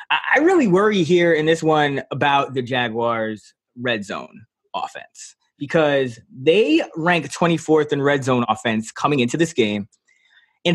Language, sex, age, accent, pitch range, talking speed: English, male, 20-39, American, 145-215 Hz, 145 wpm